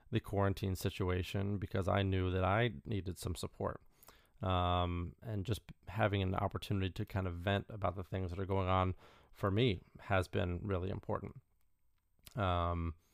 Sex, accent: male, American